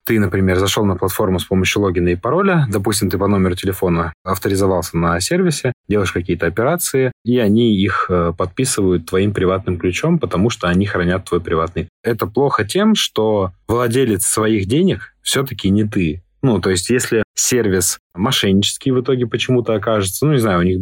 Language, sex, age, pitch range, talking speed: Russian, male, 20-39, 90-115 Hz, 170 wpm